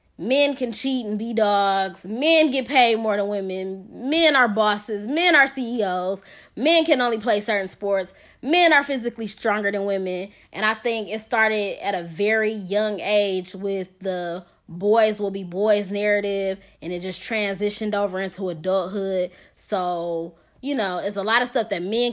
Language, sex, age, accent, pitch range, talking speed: English, female, 20-39, American, 190-240 Hz, 175 wpm